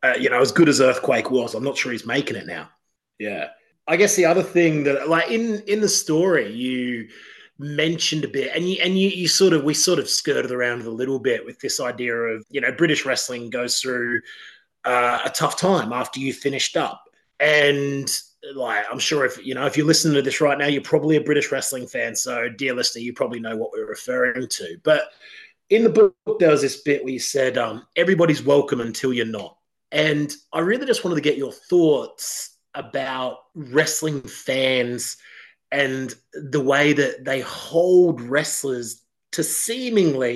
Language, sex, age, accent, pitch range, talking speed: English, male, 30-49, Australian, 130-175 Hz, 195 wpm